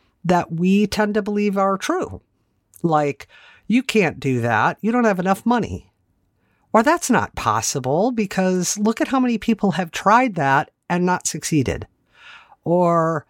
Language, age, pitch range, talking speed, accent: English, 50-69, 140-200 Hz, 155 wpm, American